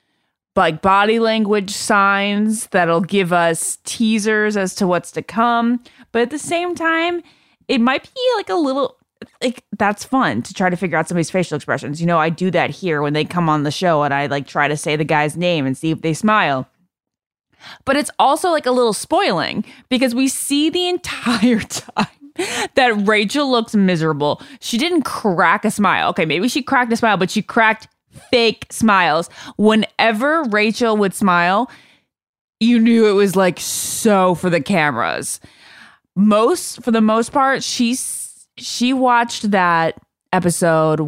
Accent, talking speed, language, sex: American, 170 wpm, English, female